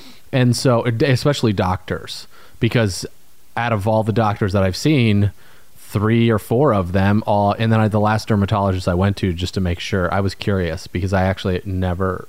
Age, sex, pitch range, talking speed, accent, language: 30-49, male, 100-130 Hz, 190 wpm, American, English